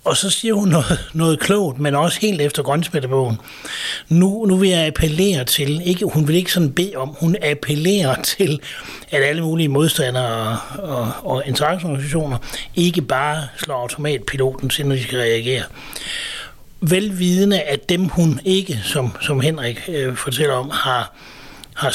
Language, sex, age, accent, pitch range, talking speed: Danish, male, 60-79, native, 130-170 Hz, 160 wpm